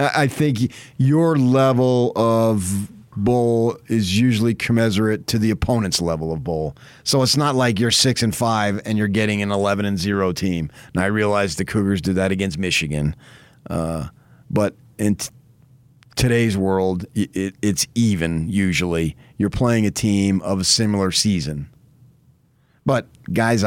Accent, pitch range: American, 85-125 Hz